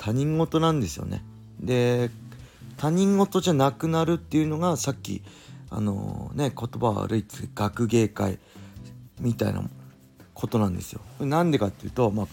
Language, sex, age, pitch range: Japanese, male, 40-59, 100-135 Hz